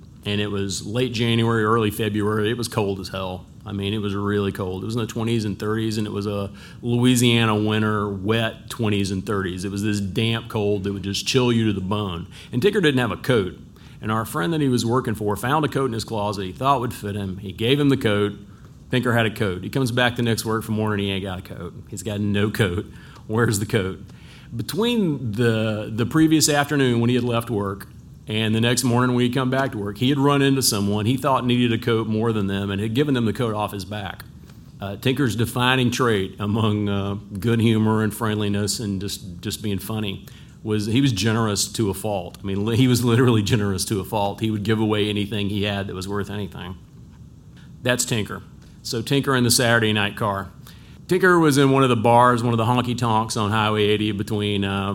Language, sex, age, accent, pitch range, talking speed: English, male, 40-59, American, 100-120 Hz, 230 wpm